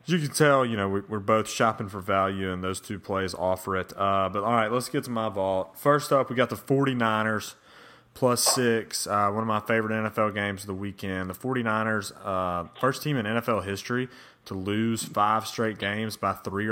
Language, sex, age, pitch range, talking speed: English, male, 30-49, 95-120 Hz, 210 wpm